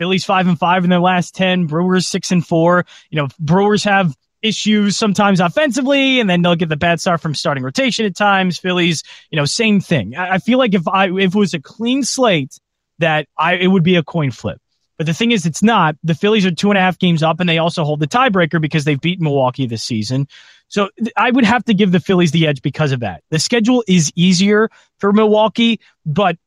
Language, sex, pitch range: English, male, 150-190 Hz